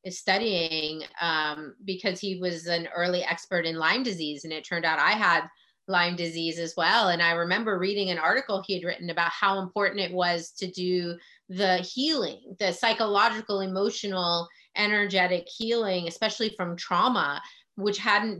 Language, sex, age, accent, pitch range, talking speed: English, female, 30-49, American, 175-215 Hz, 165 wpm